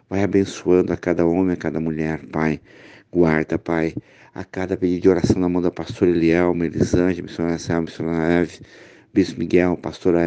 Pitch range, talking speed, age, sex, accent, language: 85-90 Hz, 170 wpm, 50-69, male, Brazilian, Portuguese